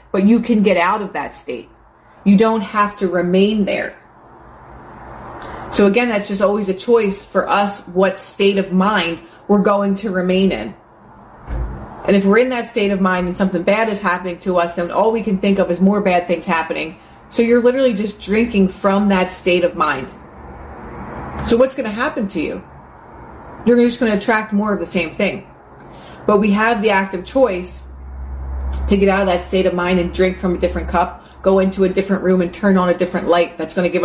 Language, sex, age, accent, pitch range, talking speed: English, female, 30-49, American, 175-200 Hz, 210 wpm